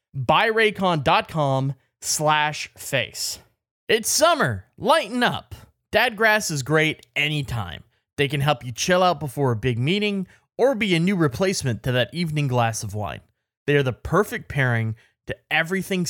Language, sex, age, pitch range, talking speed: English, male, 20-39, 125-190 Hz, 135 wpm